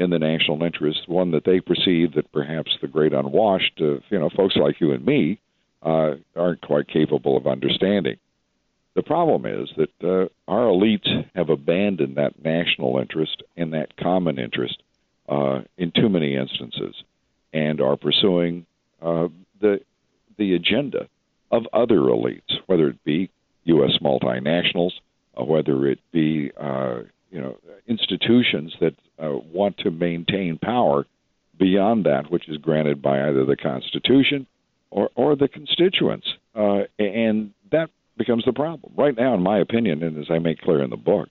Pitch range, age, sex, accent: 75-100 Hz, 60-79, male, American